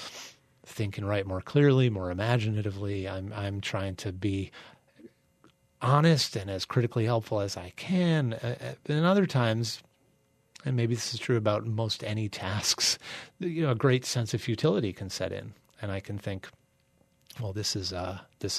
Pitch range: 100-130 Hz